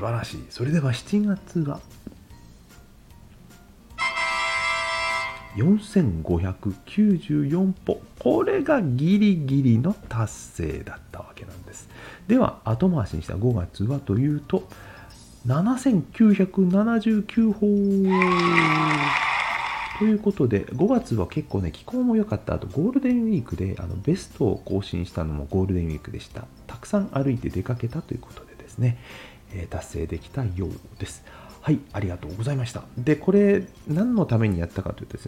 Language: Japanese